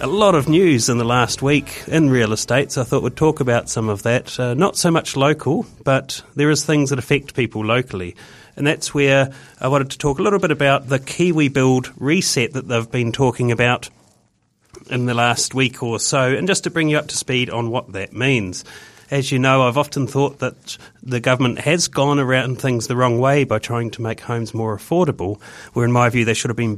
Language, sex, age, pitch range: English, male, 30-49, 115-145 Hz